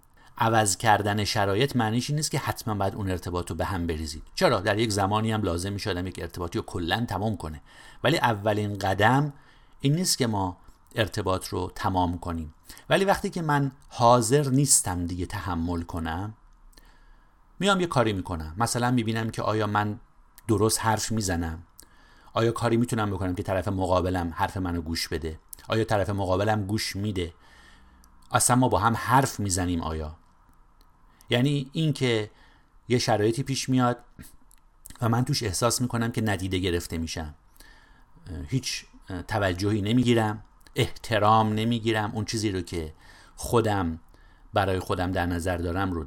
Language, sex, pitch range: Persian, male, 90-125 Hz